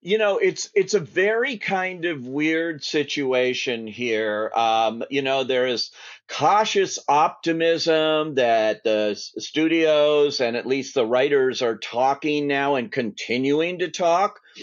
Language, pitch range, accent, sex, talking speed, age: English, 135-185 Hz, American, male, 135 wpm, 50-69